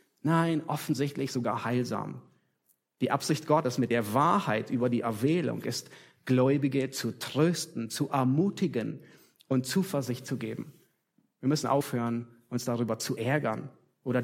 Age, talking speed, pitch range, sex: 30-49, 130 wpm, 130-180 Hz, male